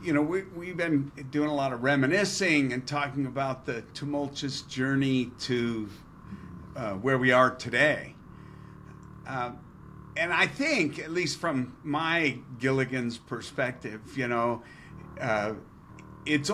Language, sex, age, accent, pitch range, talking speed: English, male, 50-69, American, 125-155 Hz, 130 wpm